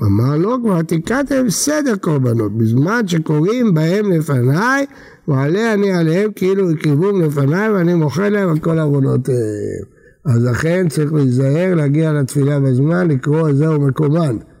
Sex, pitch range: male, 140-185 Hz